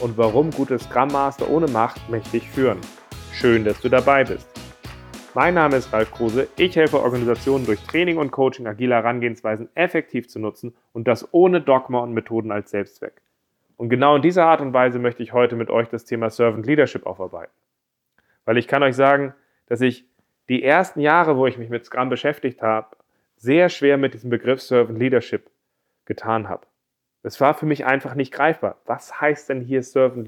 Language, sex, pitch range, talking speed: German, male, 115-145 Hz, 185 wpm